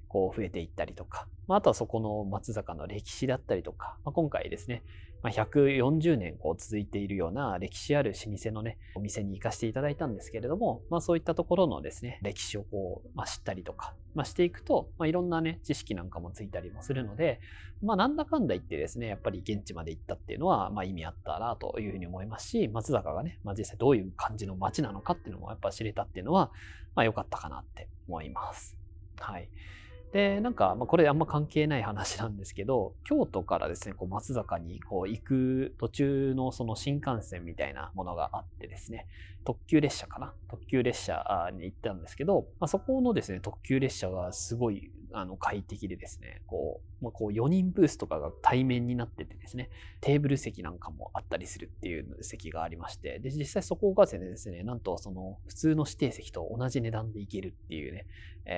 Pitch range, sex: 90-130 Hz, male